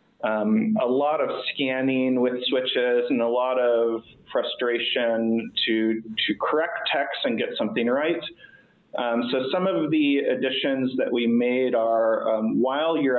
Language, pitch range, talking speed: English, 120-170 Hz, 150 wpm